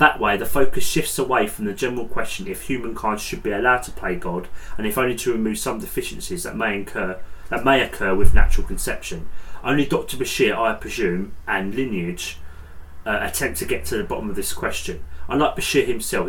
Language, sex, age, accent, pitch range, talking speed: English, male, 30-49, British, 95-115 Hz, 200 wpm